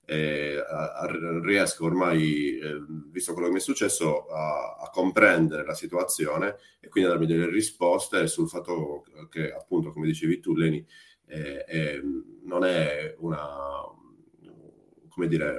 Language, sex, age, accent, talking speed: Italian, male, 30-49, native, 130 wpm